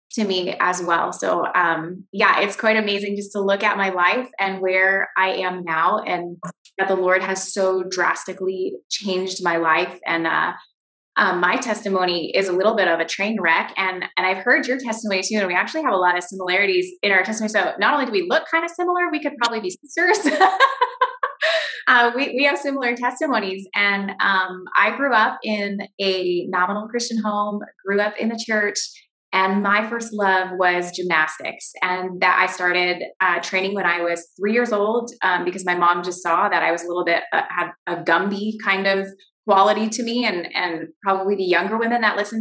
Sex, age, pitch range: female, 20-39, 180-220 Hz